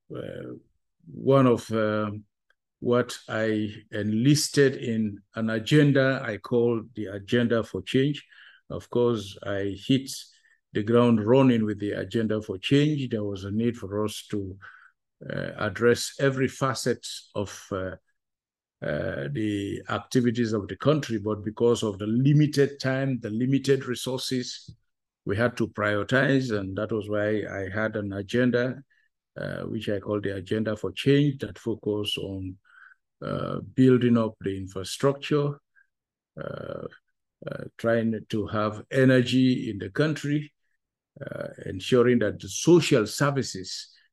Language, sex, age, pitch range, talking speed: English, male, 50-69, 105-130 Hz, 135 wpm